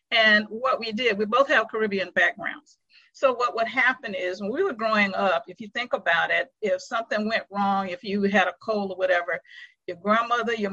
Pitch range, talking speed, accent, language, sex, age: 190-235 Hz, 215 wpm, American, English, female, 50-69